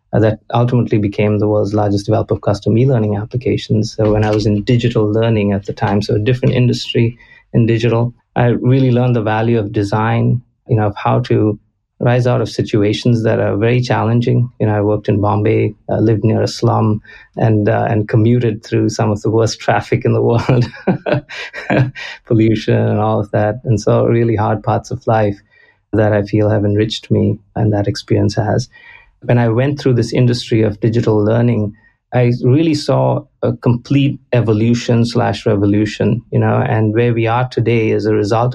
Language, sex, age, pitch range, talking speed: English, male, 30-49, 105-120 Hz, 185 wpm